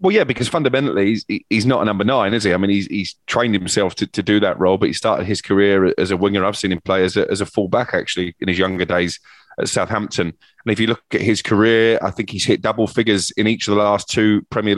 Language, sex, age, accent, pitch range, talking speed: English, male, 30-49, British, 100-110 Hz, 270 wpm